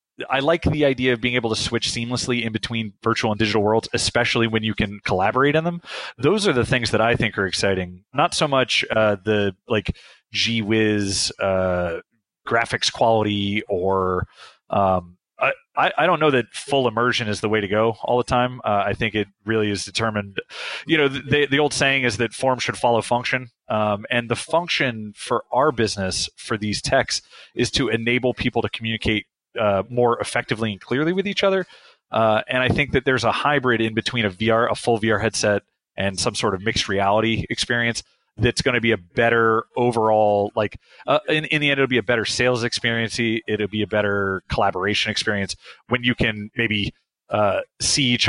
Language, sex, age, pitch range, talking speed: English, male, 30-49, 105-120 Hz, 200 wpm